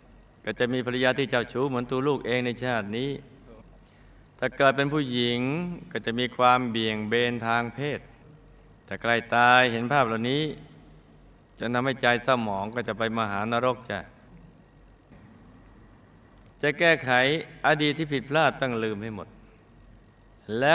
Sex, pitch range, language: male, 105-130 Hz, Thai